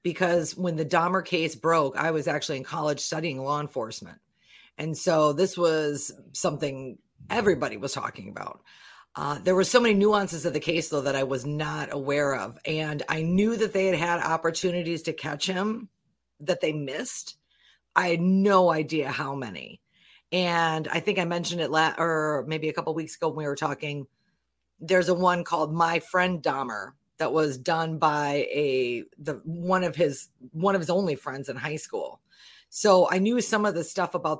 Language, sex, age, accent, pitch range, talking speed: English, female, 40-59, American, 150-185 Hz, 190 wpm